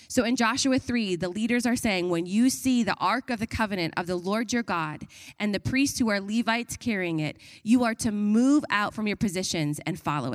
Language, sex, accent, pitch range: English, female, American, 180-235 Hz